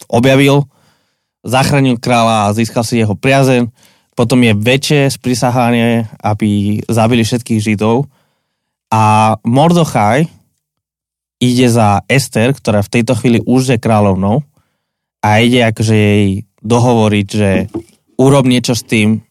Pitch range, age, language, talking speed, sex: 105-130 Hz, 20-39, Slovak, 120 wpm, male